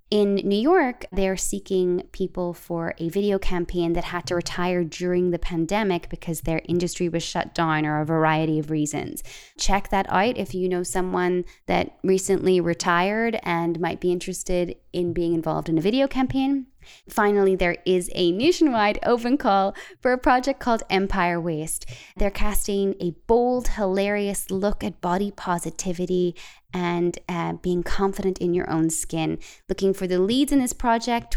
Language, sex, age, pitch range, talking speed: English, female, 20-39, 170-205 Hz, 165 wpm